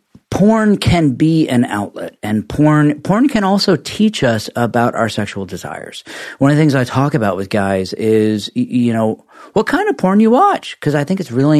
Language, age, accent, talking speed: English, 40-59, American, 200 wpm